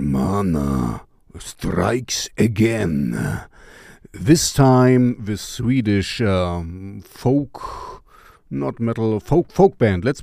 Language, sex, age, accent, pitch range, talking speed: English, male, 40-59, German, 105-130 Hz, 90 wpm